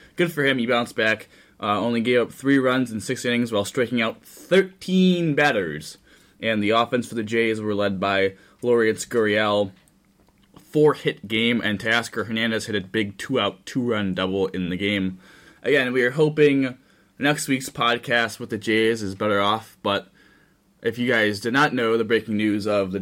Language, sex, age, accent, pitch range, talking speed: English, male, 20-39, American, 100-120 Hz, 180 wpm